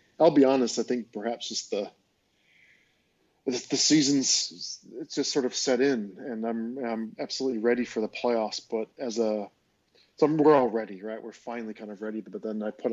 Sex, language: male, English